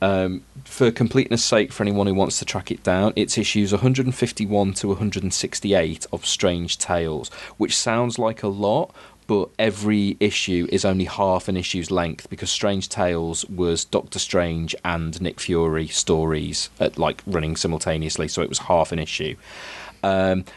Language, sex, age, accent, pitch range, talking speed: English, male, 30-49, British, 85-100 Hz, 160 wpm